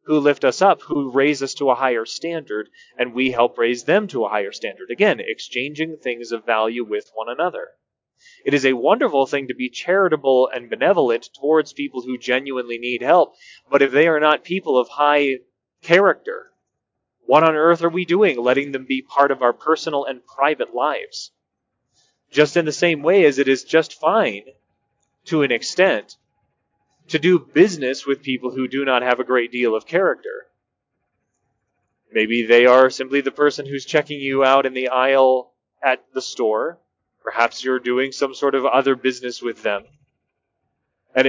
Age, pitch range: 30-49, 125-160 Hz